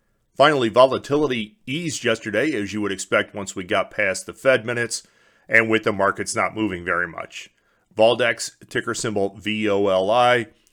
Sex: male